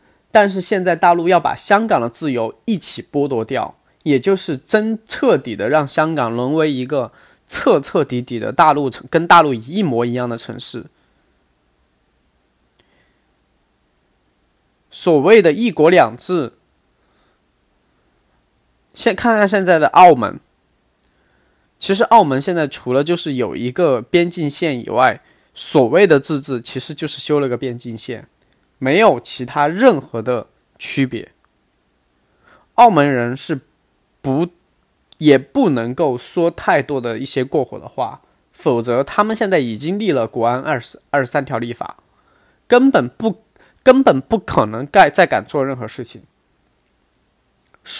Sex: male